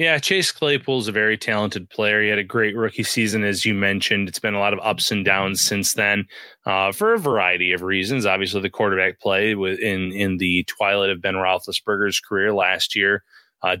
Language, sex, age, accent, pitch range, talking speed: English, male, 20-39, American, 100-120 Hz, 210 wpm